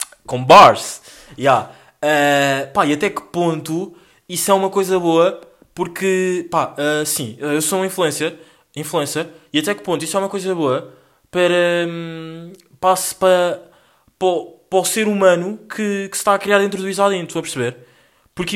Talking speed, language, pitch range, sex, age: 175 wpm, Portuguese, 150-190 Hz, male, 20-39